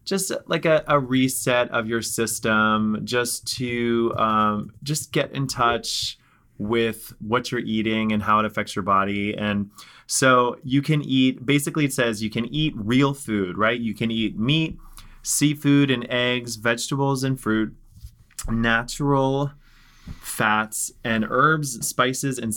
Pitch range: 110-140 Hz